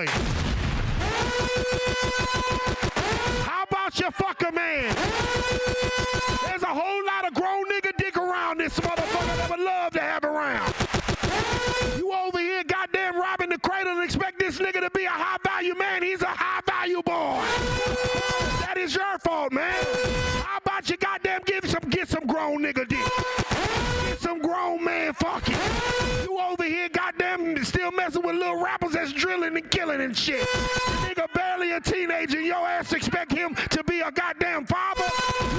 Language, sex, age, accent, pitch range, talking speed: English, male, 30-49, American, 320-370 Hz, 155 wpm